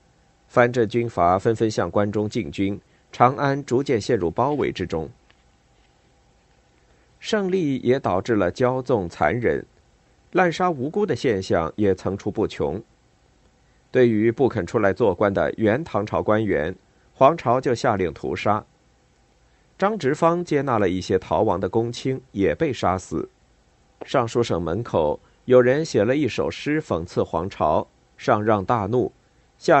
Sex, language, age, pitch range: male, Chinese, 50-69, 100-140 Hz